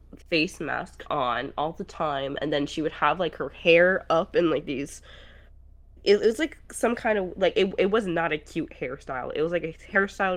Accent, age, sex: American, 20-39, female